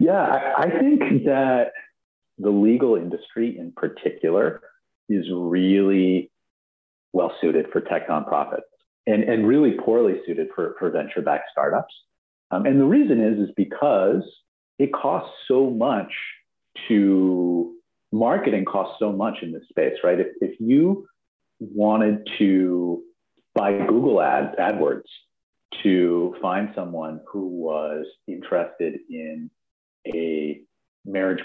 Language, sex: English, male